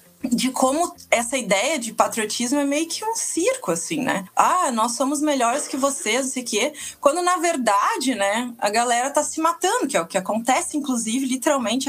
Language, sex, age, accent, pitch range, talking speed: Portuguese, female, 20-39, Brazilian, 205-295 Hz, 195 wpm